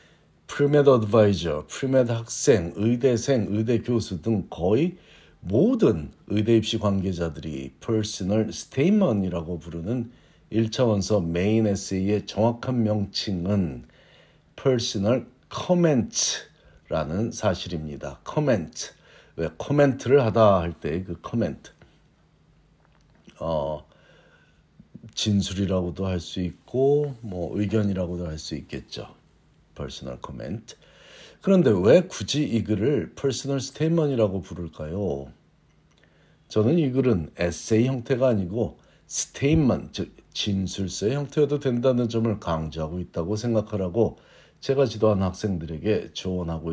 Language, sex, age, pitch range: Korean, male, 50-69, 90-125 Hz